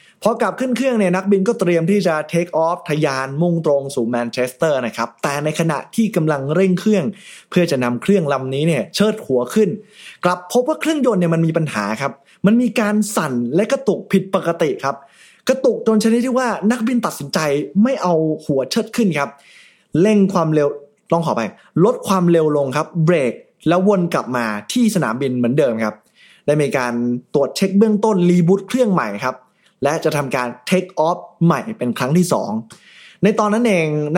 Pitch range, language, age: 140-200 Hz, Thai, 20-39